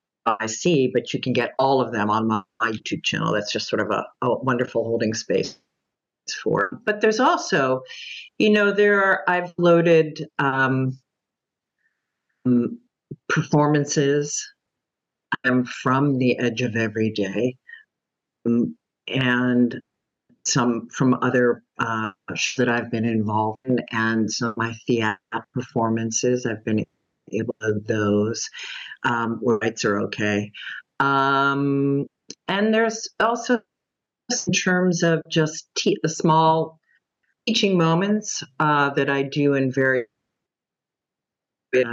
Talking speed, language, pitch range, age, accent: 125 wpm, English, 115-160 Hz, 50-69, American